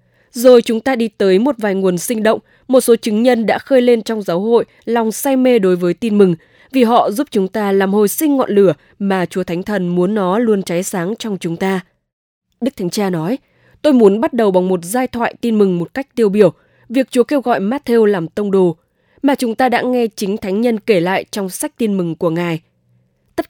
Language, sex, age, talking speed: English, female, 20-39, 235 wpm